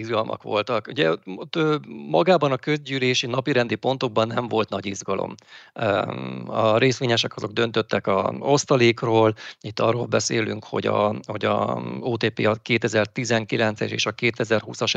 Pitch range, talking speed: 105-125 Hz, 135 wpm